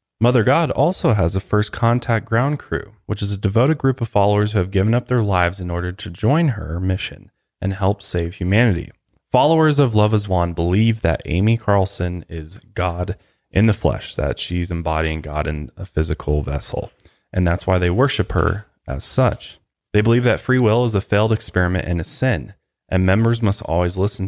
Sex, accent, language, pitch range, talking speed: male, American, English, 85-115 Hz, 195 wpm